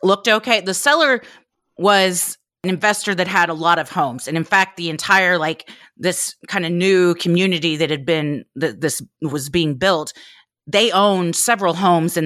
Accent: American